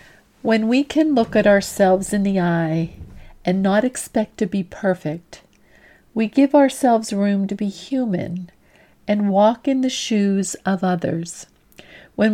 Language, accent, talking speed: English, American, 145 wpm